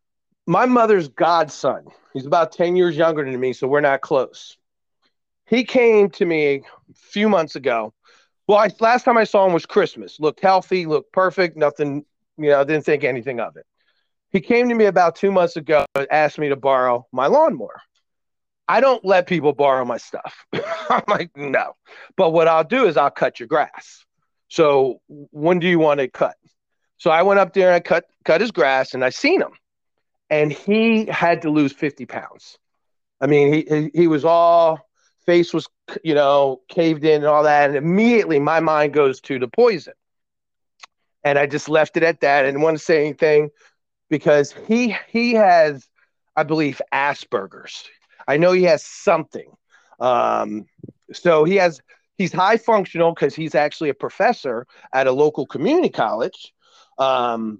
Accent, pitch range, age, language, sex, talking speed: American, 145-190 Hz, 40-59, English, male, 175 wpm